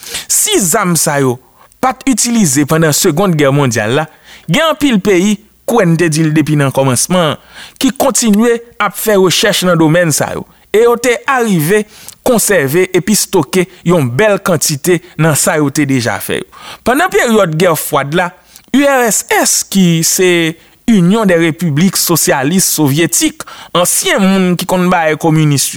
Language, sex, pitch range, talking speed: French, male, 155-205 Hz, 130 wpm